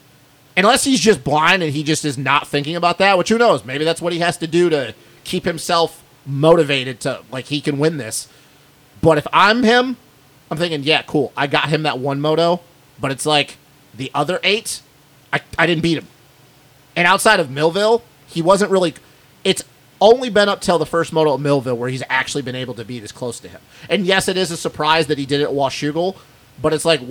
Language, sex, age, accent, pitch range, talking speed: English, male, 30-49, American, 140-165 Hz, 220 wpm